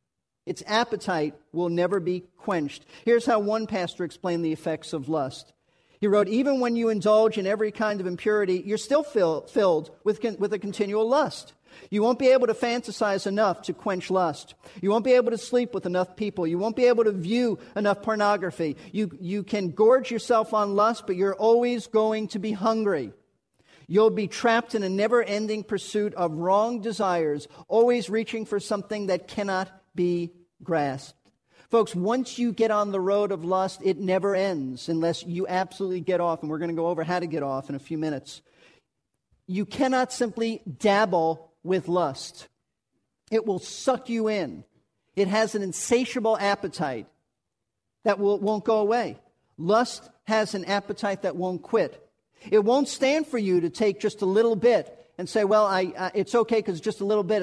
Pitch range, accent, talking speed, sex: 180-220 Hz, American, 180 wpm, male